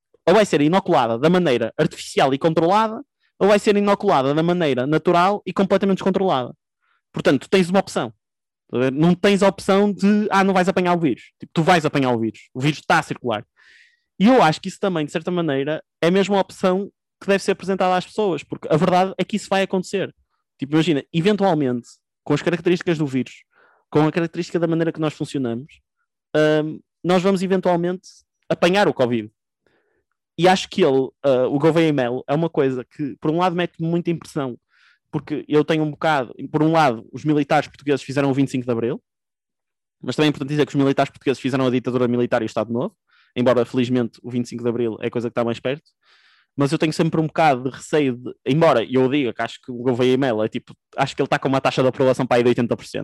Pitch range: 125-180 Hz